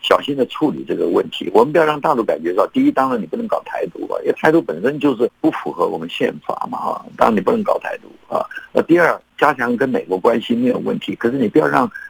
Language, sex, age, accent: Chinese, male, 50-69, native